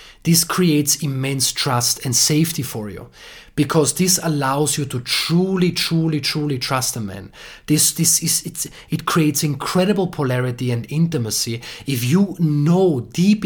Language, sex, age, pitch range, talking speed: English, male, 30-49, 125-165 Hz, 140 wpm